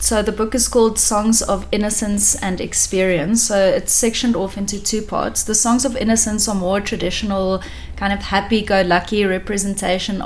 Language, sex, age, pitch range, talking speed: English, female, 30-49, 180-210 Hz, 165 wpm